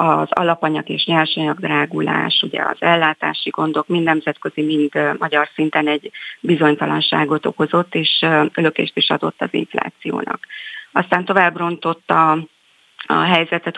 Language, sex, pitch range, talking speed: Hungarian, female, 155-190 Hz, 120 wpm